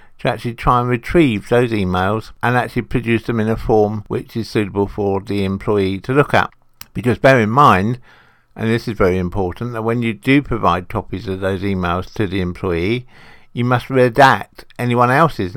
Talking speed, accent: 190 wpm, British